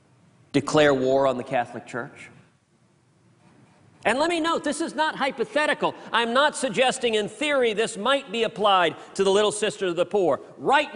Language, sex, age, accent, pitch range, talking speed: English, male, 50-69, American, 160-225 Hz, 170 wpm